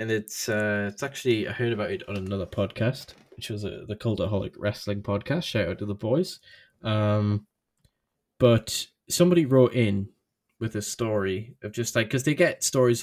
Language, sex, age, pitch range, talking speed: English, male, 10-29, 100-115 Hz, 180 wpm